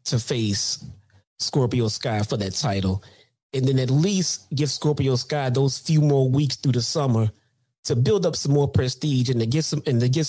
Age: 30-49